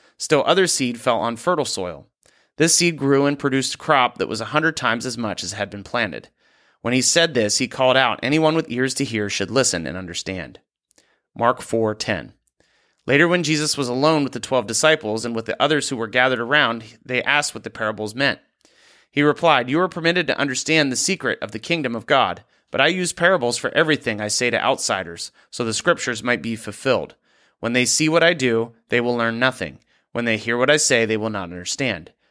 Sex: male